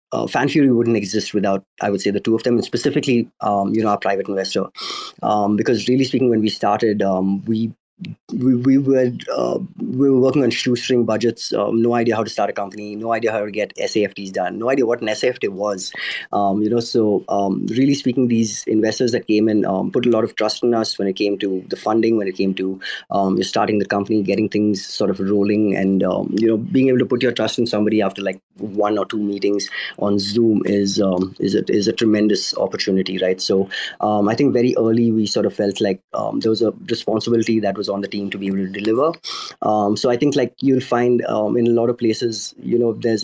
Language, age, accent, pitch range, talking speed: English, 20-39, Indian, 100-120 Hz, 235 wpm